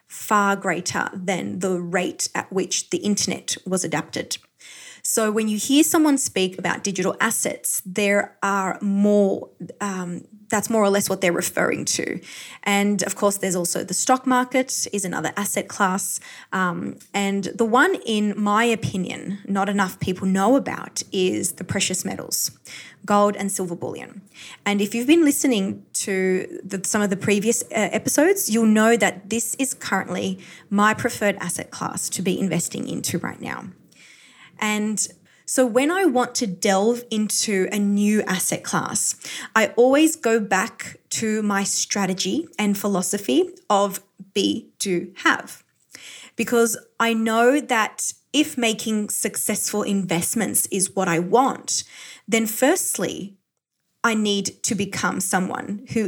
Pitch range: 190-230 Hz